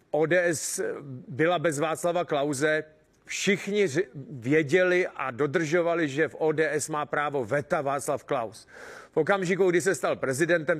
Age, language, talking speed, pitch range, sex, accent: 40-59, Czech, 130 wpm, 155-190 Hz, male, native